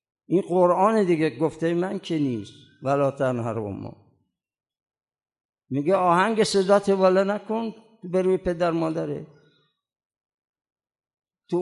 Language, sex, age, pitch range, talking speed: Persian, male, 60-79, 135-185 Hz, 105 wpm